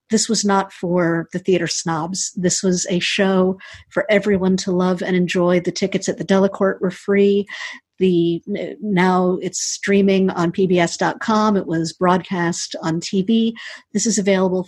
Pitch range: 170-195 Hz